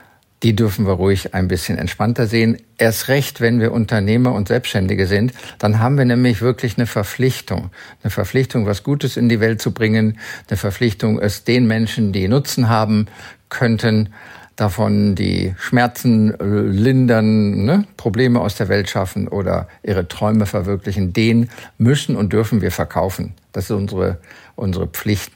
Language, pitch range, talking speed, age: German, 105-125 Hz, 155 wpm, 50-69